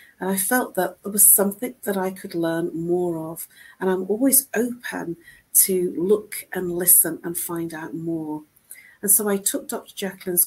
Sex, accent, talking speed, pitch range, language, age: female, British, 180 wpm, 165-205 Hz, English, 40-59